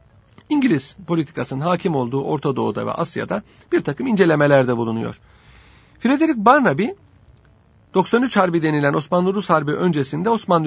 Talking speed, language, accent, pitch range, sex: 120 wpm, Turkish, native, 140-205 Hz, male